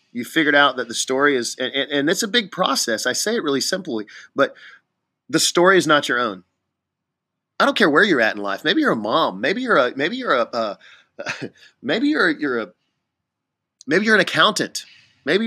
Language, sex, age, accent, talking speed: English, male, 30-49, American, 205 wpm